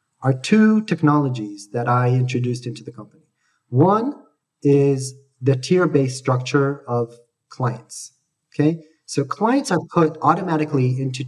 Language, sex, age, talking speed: English, male, 30-49, 120 wpm